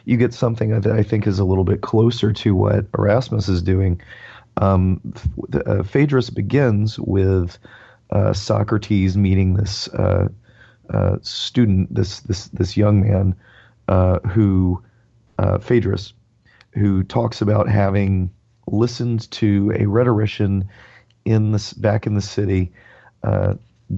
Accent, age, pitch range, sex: American, 40-59, 100-115 Hz, male